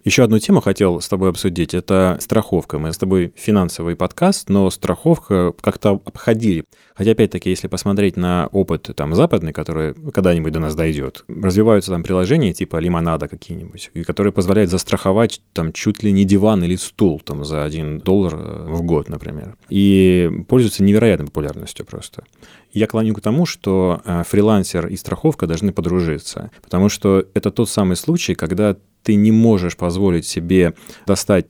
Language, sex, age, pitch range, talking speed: Russian, male, 30-49, 85-100 Hz, 160 wpm